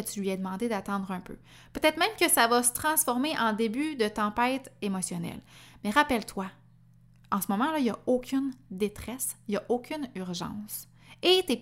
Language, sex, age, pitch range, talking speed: French, female, 20-39, 195-255 Hz, 195 wpm